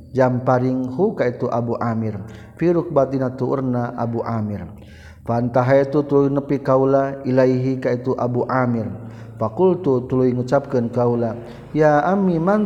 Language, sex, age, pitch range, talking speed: Indonesian, male, 50-69, 120-140 Hz, 125 wpm